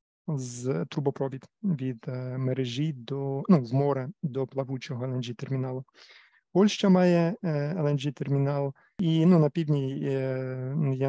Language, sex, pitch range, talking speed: Ukrainian, male, 135-160 Hz, 125 wpm